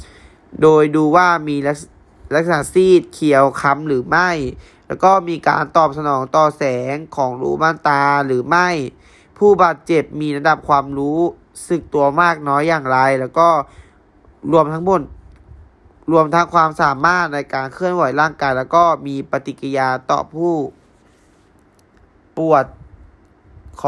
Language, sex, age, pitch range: Thai, male, 20-39, 135-160 Hz